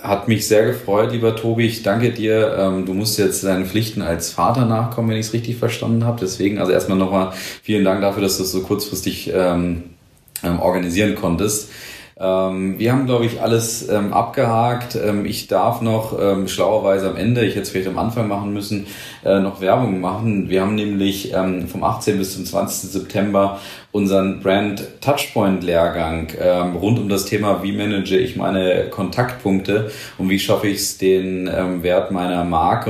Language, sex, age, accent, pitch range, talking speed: German, male, 40-59, German, 95-110 Hz, 175 wpm